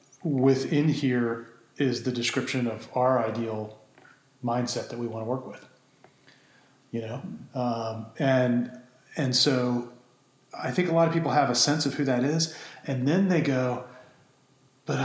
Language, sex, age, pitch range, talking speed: English, male, 30-49, 120-145 Hz, 155 wpm